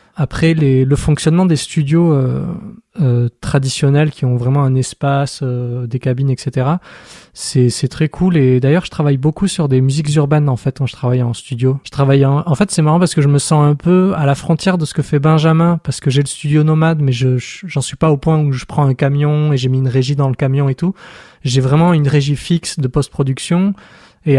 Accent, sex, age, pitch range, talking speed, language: French, male, 20-39, 135-160 Hz, 240 wpm, French